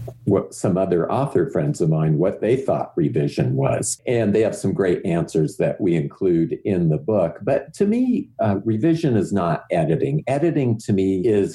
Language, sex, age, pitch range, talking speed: English, male, 50-69, 90-130 Hz, 185 wpm